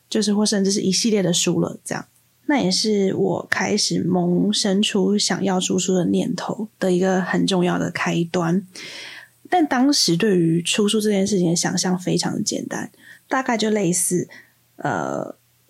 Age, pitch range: 20-39, 180-210 Hz